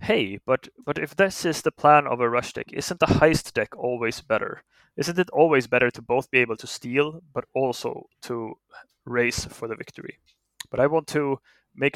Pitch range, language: 120-145 Hz, English